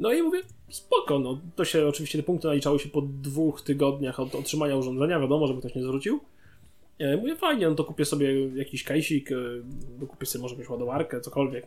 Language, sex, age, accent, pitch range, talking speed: Polish, male, 20-39, native, 130-155 Hz, 190 wpm